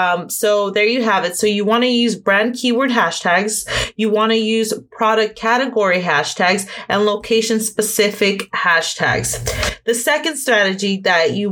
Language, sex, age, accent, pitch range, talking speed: English, female, 30-49, American, 200-235 Hz, 155 wpm